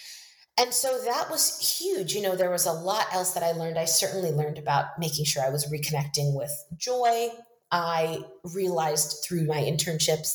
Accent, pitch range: American, 150-190 Hz